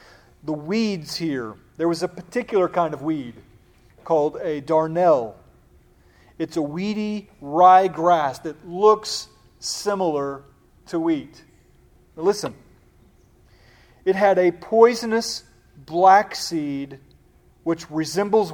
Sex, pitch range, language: male, 150-190 Hz, English